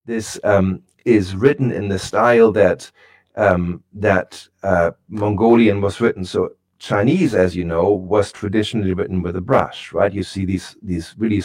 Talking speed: 160 wpm